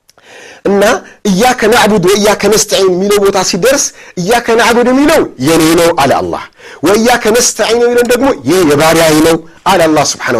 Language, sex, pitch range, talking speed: Amharic, male, 175-245 Hz, 135 wpm